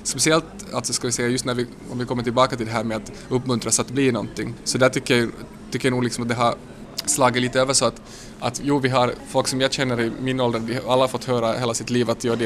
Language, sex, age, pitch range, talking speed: Swedish, male, 20-39, 115-125 Hz, 295 wpm